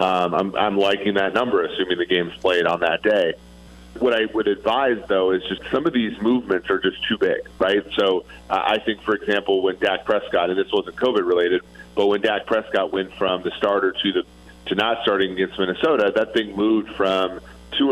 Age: 40-59